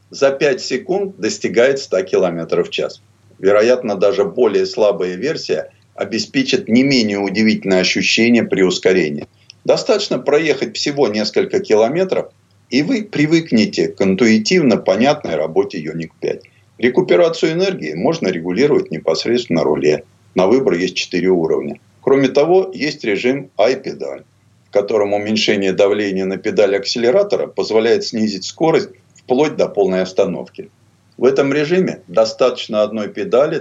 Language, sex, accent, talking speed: Russian, male, native, 125 wpm